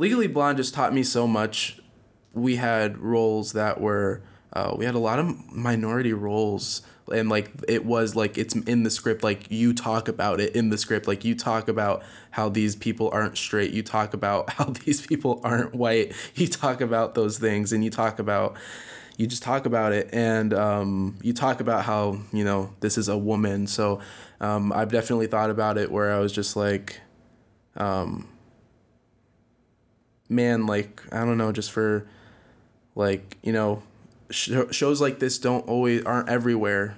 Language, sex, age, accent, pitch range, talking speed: English, male, 20-39, American, 105-120 Hz, 180 wpm